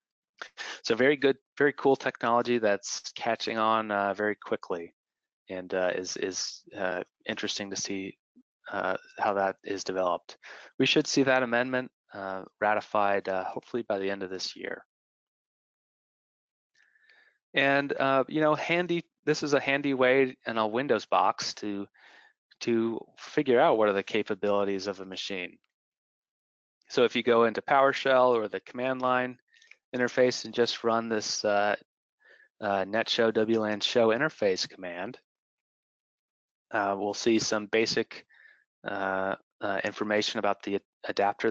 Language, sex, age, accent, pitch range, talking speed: English, male, 20-39, American, 100-130 Hz, 140 wpm